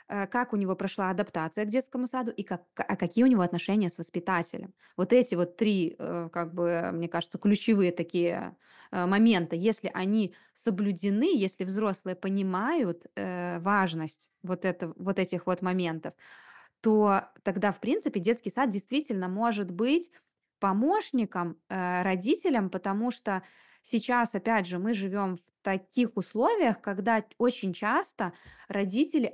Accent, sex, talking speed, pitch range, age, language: native, female, 135 wpm, 185-230 Hz, 20-39, Russian